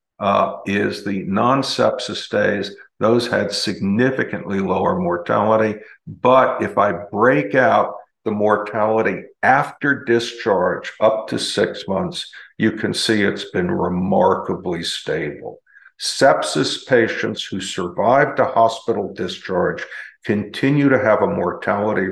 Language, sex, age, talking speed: English, male, 50-69, 115 wpm